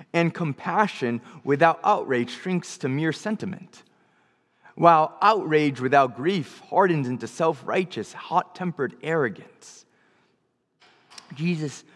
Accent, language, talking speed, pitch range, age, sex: American, English, 90 wpm, 140-190 Hz, 20-39, male